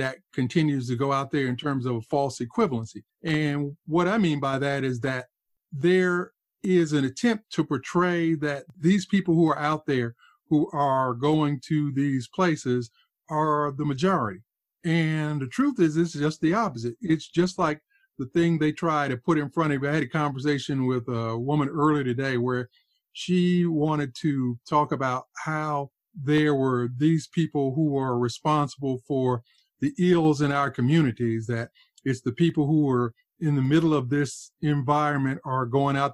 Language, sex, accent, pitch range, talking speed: English, male, American, 135-165 Hz, 175 wpm